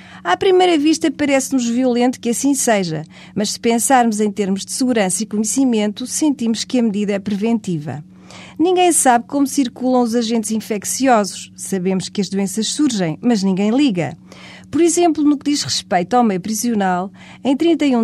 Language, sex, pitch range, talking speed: Portuguese, female, 200-260 Hz, 165 wpm